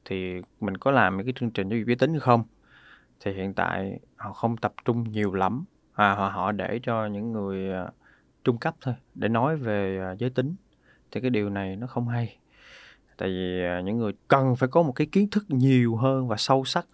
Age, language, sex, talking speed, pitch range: 20-39, Vietnamese, male, 205 wpm, 105-135 Hz